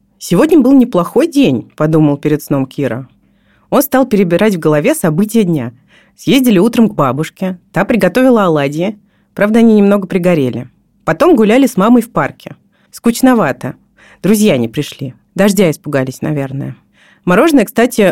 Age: 30-49